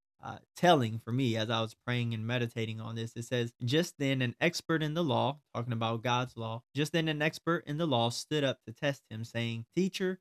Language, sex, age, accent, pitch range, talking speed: English, male, 20-39, American, 115-135 Hz, 230 wpm